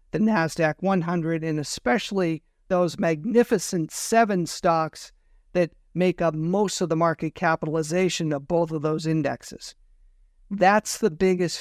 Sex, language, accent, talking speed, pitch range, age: male, English, American, 130 wpm, 160-195 Hz, 50-69